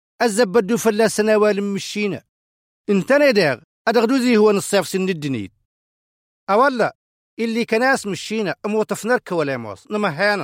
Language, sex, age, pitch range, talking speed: Arabic, male, 40-59, 165-230 Hz, 110 wpm